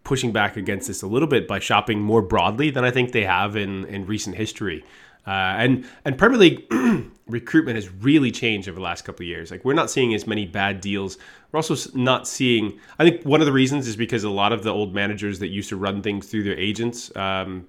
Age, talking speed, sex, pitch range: 20-39, 235 wpm, male, 100-125 Hz